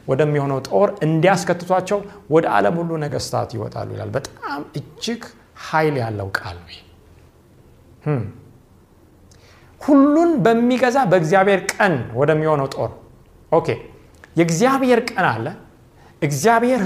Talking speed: 95 wpm